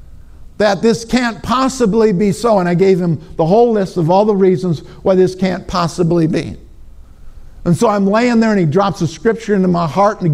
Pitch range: 170-230 Hz